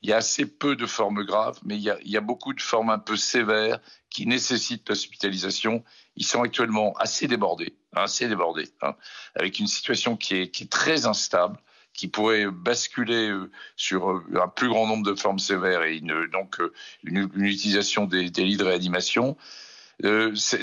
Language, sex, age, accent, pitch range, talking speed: French, male, 50-69, French, 100-120 Hz, 190 wpm